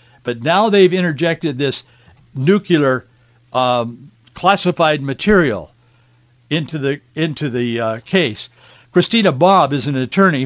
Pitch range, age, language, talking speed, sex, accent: 130-180 Hz, 60-79, English, 115 wpm, male, American